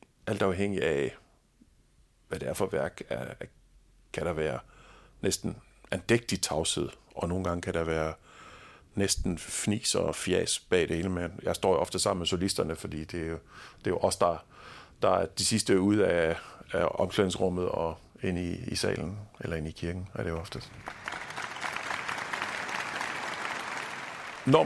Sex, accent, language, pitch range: male, native, Danish, 80-100 Hz